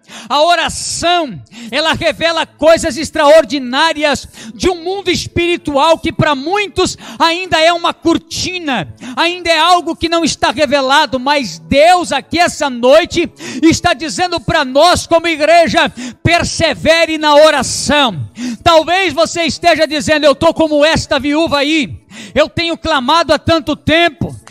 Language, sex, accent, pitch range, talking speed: Portuguese, male, Brazilian, 295-345 Hz, 130 wpm